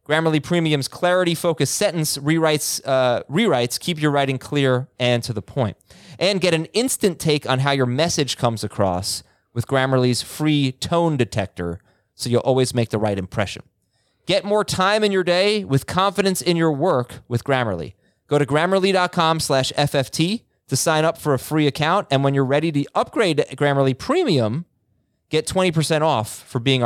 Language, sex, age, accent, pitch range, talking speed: English, male, 30-49, American, 115-155 Hz, 170 wpm